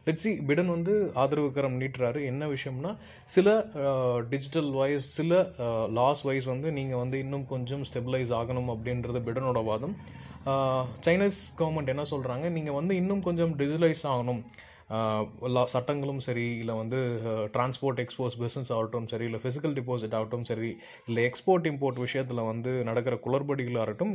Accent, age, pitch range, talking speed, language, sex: native, 20-39, 120-155 Hz, 135 wpm, Tamil, male